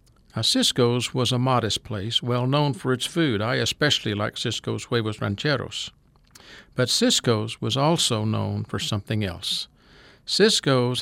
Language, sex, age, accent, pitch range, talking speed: English, male, 60-79, American, 115-140 Hz, 135 wpm